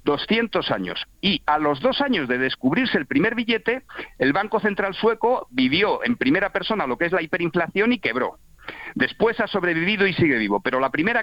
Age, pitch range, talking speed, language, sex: 50-69, 155-225 Hz, 190 wpm, Spanish, male